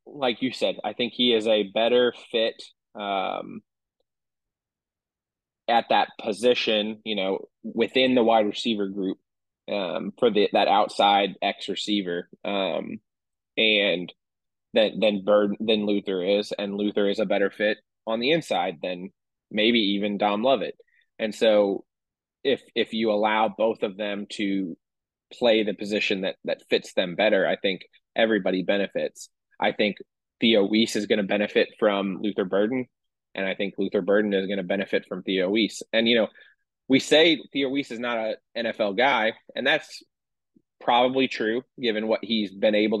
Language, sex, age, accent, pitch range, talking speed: English, male, 20-39, American, 100-115 Hz, 160 wpm